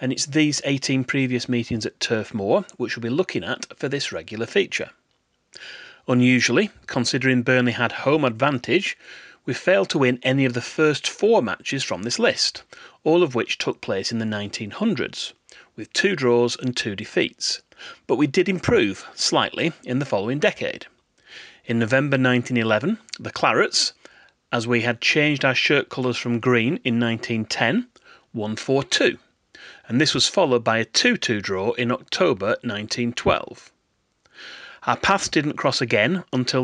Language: English